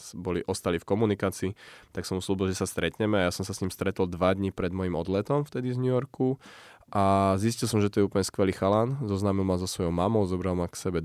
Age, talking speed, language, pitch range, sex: 20-39, 235 wpm, Slovak, 90-100 Hz, male